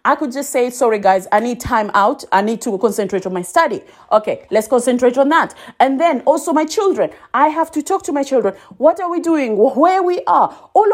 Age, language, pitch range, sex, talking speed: 30-49, English, 220-315 Hz, female, 230 wpm